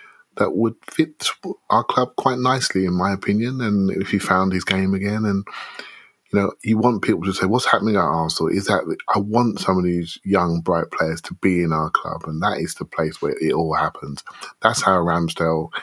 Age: 30-49